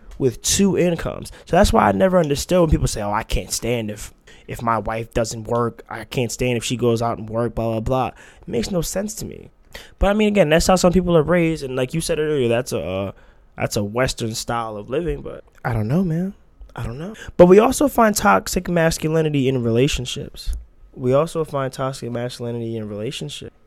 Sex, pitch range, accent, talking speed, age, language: male, 110-135 Hz, American, 220 wpm, 20-39, English